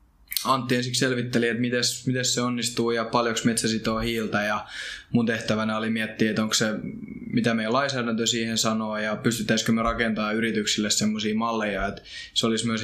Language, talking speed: Finnish, 170 wpm